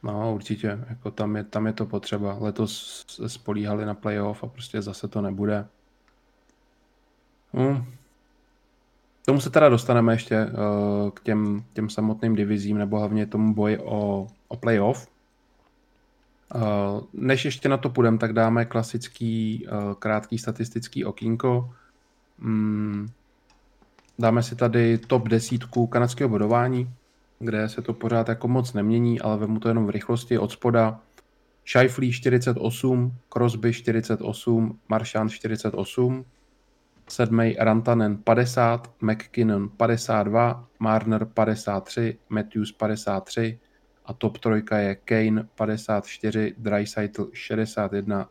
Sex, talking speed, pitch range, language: male, 120 wpm, 105-120 Hz, Czech